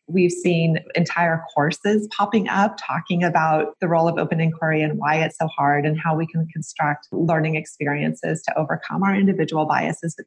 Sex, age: female, 30-49